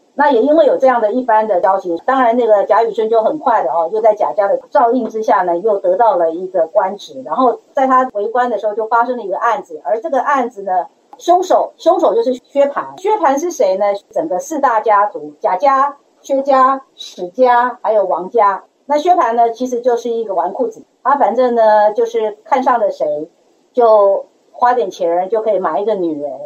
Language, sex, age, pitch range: Chinese, female, 50-69, 200-265 Hz